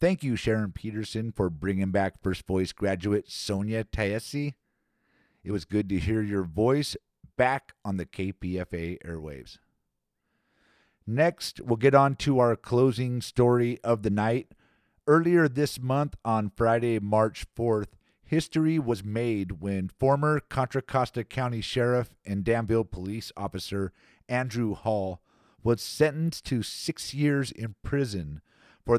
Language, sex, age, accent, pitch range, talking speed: English, male, 50-69, American, 100-130 Hz, 135 wpm